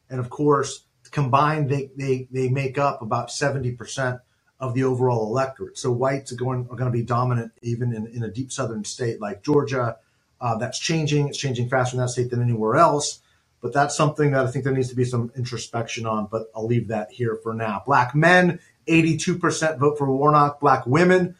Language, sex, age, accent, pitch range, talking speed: English, male, 40-59, American, 125-155 Hz, 205 wpm